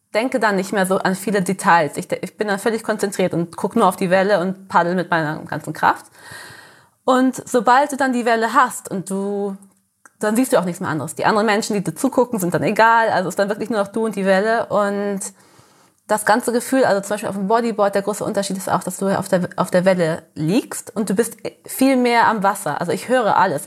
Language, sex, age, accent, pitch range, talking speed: German, female, 20-39, German, 175-215 Hz, 240 wpm